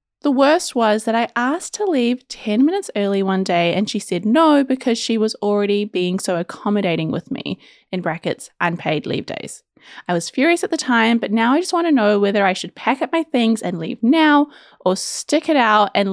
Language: English